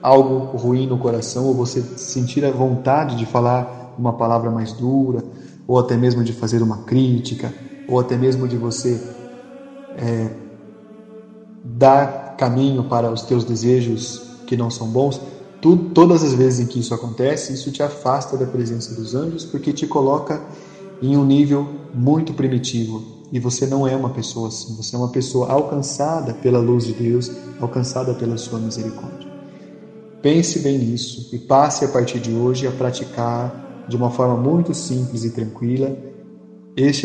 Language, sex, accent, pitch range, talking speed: Portuguese, male, Brazilian, 120-140 Hz, 160 wpm